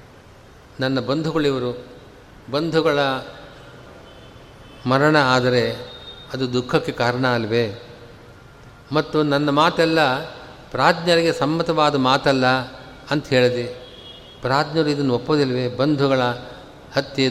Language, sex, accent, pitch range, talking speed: Kannada, male, native, 120-150 Hz, 75 wpm